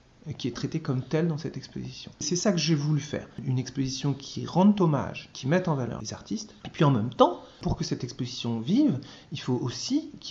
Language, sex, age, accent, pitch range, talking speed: French, male, 30-49, French, 125-170 Hz, 225 wpm